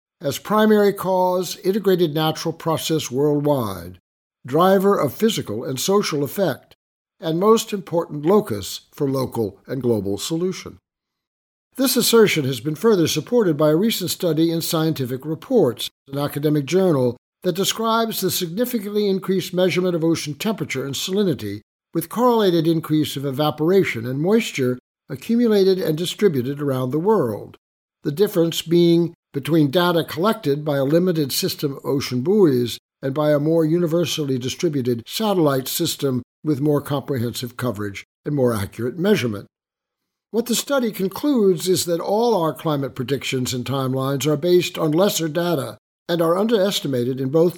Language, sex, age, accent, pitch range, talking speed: English, male, 60-79, American, 140-190 Hz, 145 wpm